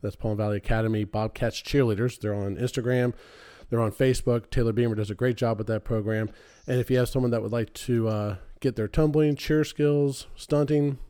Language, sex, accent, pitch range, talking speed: English, male, American, 115-145 Hz, 200 wpm